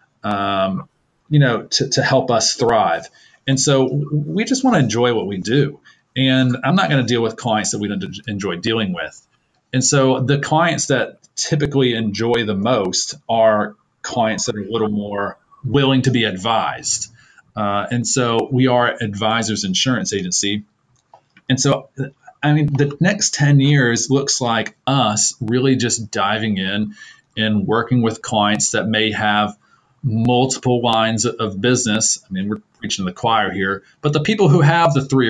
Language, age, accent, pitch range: English, 40-59, American, 105-135 Hz